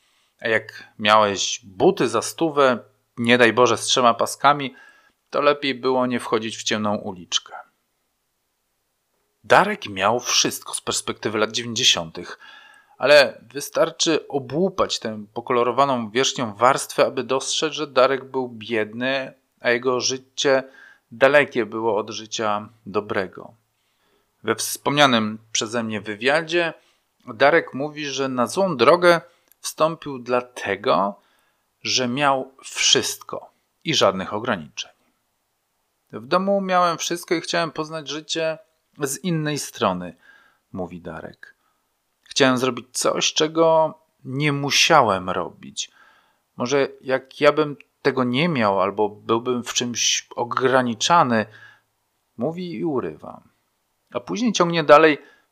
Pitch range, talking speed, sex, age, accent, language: 120-155 Hz, 115 wpm, male, 40-59, native, Polish